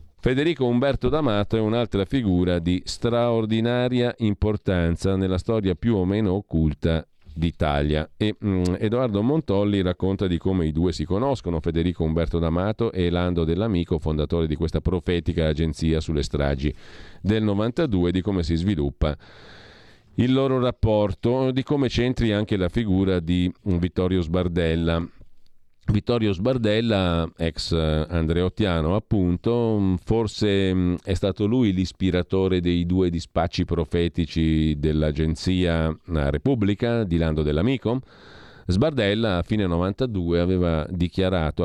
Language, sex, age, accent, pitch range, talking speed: Italian, male, 40-59, native, 80-105 Hz, 120 wpm